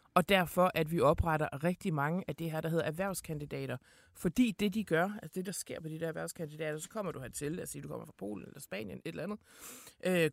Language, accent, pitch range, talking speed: Danish, native, 155-190 Hz, 245 wpm